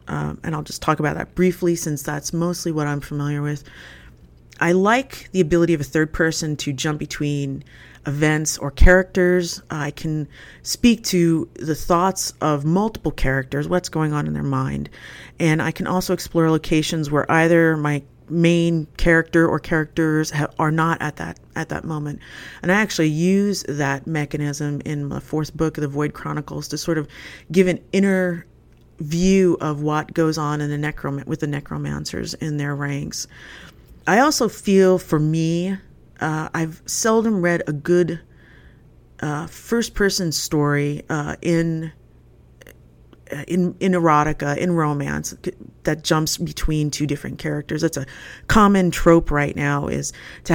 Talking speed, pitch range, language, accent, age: 160 wpm, 145-175 Hz, English, American, 30-49